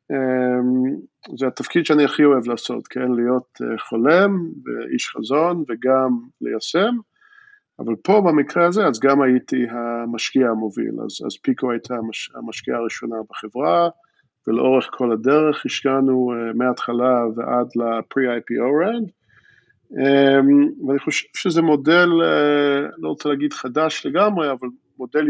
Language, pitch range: Hebrew, 120-150 Hz